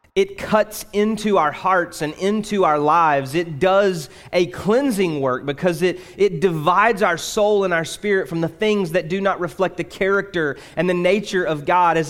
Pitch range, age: 150-195 Hz, 30-49